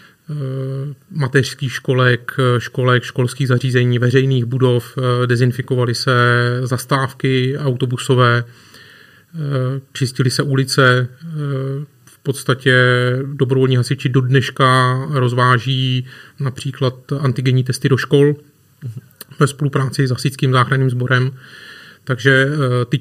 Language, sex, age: Czech, male, 30-49